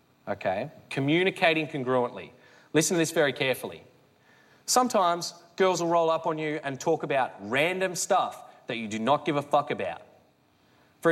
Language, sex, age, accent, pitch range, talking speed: English, male, 20-39, Australian, 135-215 Hz, 155 wpm